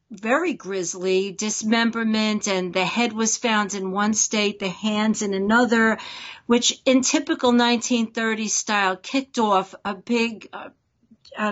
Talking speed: 135 wpm